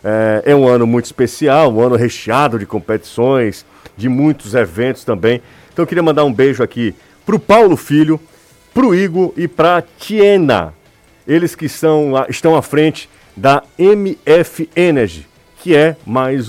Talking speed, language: 160 wpm, Portuguese